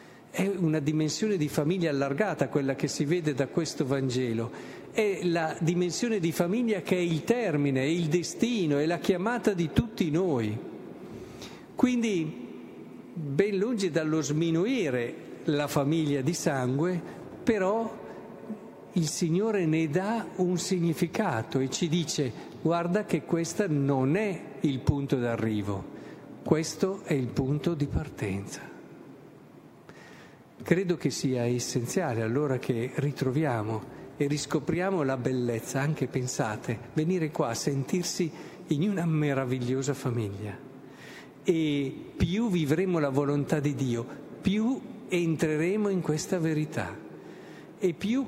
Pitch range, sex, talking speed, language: 135-180 Hz, male, 125 wpm, Italian